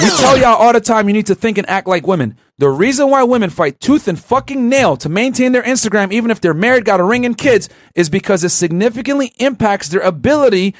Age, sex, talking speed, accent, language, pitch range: 30-49, male, 245 wpm, American, English, 165-230 Hz